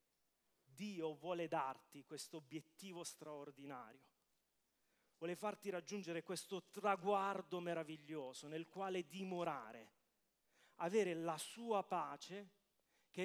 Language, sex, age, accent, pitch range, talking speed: English, male, 30-49, Italian, 180-230 Hz, 90 wpm